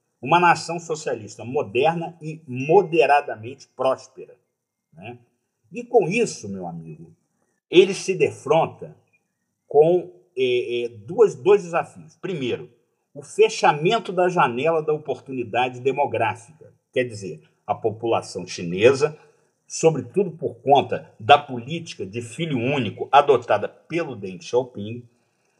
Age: 50-69